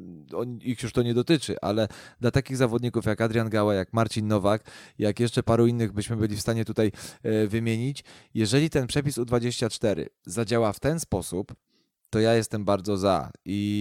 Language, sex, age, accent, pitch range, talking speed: Polish, male, 20-39, native, 100-120 Hz, 170 wpm